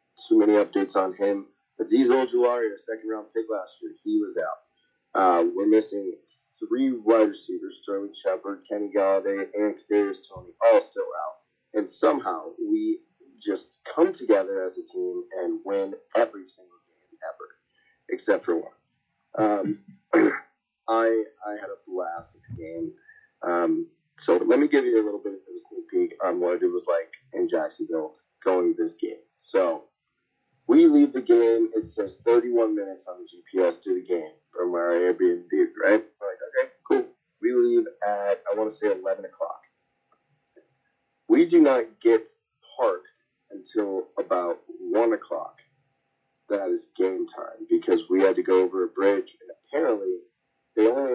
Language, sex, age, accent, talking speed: English, male, 30-49, American, 160 wpm